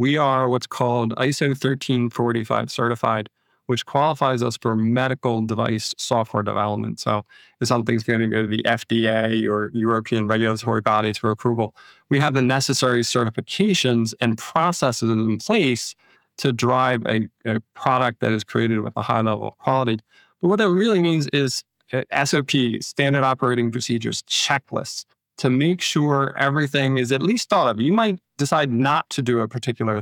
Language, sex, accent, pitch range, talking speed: English, male, American, 115-135 Hz, 160 wpm